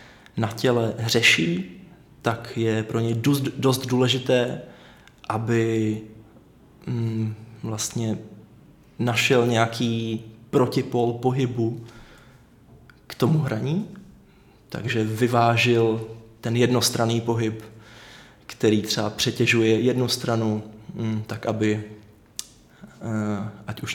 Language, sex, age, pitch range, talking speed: Czech, male, 20-39, 110-125 Hz, 80 wpm